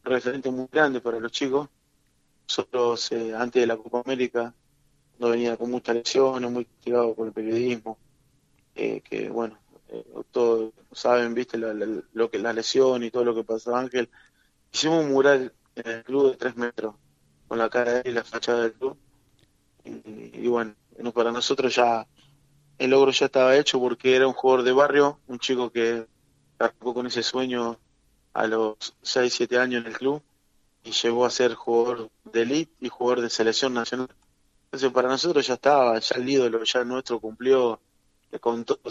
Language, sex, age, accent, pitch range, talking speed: Spanish, male, 20-39, Argentinian, 115-130 Hz, 175 wpm